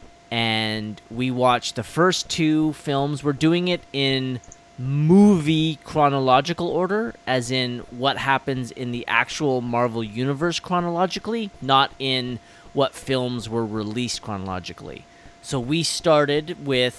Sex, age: male, 20-39